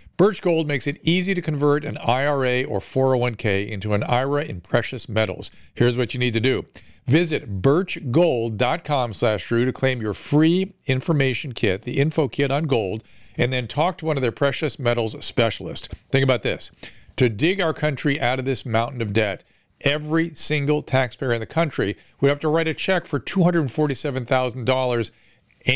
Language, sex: English, male